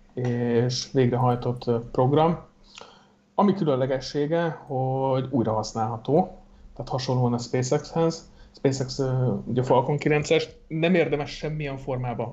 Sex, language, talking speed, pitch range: male, Hungarian, 95 wpm, 125-150 Hz